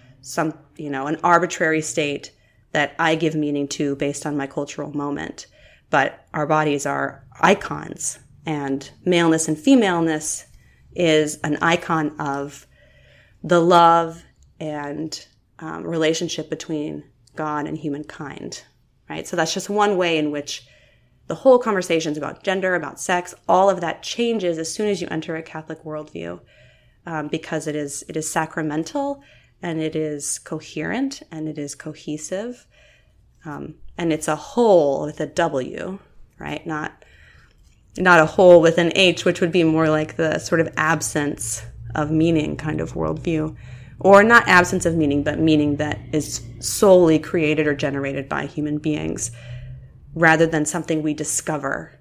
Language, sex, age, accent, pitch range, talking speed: English, female, 30-49, American, 140-165 Hz, 150 wpm